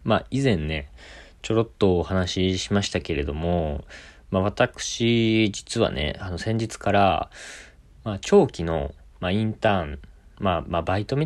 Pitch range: 80-105 Hz